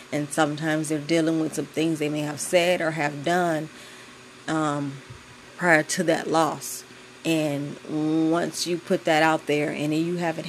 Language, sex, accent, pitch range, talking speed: English, female, American, 150-175 Hz, 165 wpm